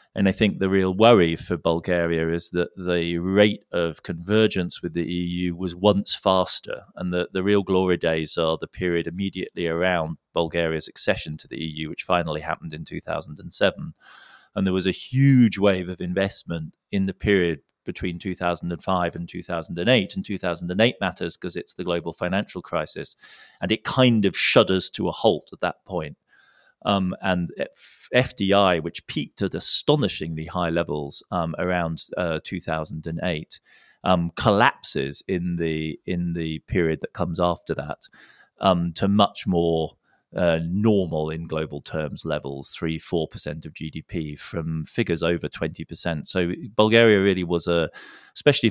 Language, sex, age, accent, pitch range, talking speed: English, male, 30-49, British, 80-95 Hz, 155 wpm